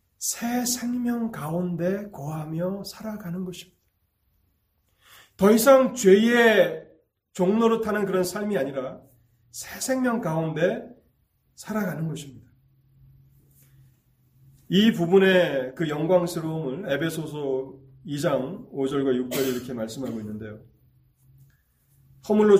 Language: Korean